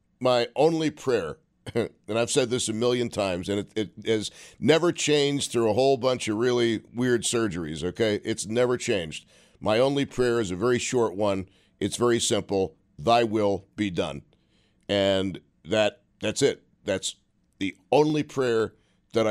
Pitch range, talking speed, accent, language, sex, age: 100-125 Hz, 160 wpm, American, English, male, 50-69